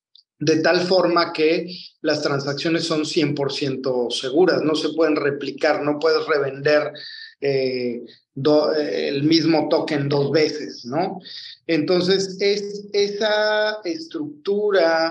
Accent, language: Mexican, Spanish